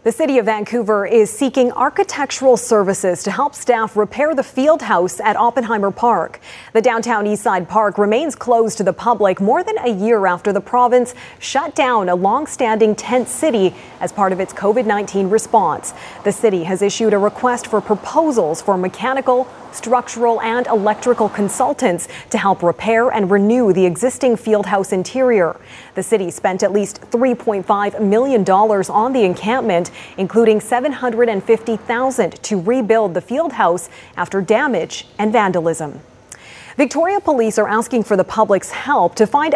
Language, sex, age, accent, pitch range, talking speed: English, female, 30-49, American, 200-245 Hz, 150 wpm